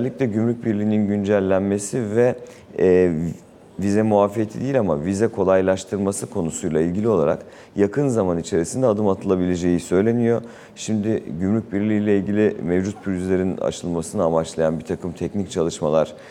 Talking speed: 125 wpm